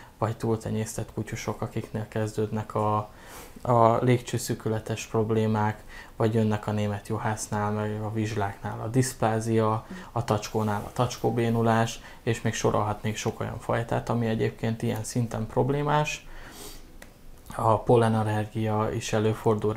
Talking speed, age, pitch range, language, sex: 115 wpm, 20-39, 105-115 Hz, Hungarian, male